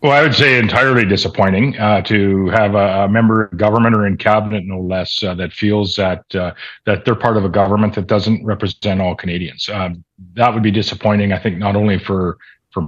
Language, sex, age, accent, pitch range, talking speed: English, male, 40-59, American, 100-115 Hz, 210 wpm